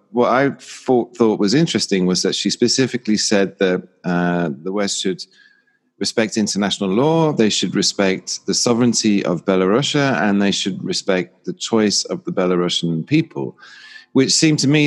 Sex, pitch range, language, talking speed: male, 90-115 Hz, English, 155 wpm